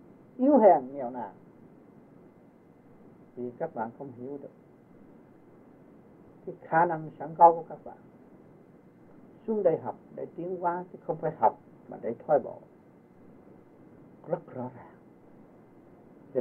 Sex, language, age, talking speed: male, Vietnamese, 60-79, 130 wpm